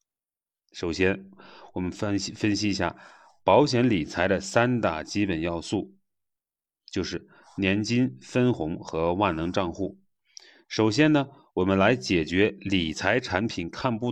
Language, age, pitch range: Chinese, 30-49, 90-120 Hz